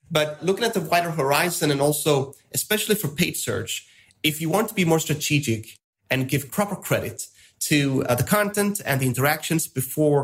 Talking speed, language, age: 180 wpm, English, 30-49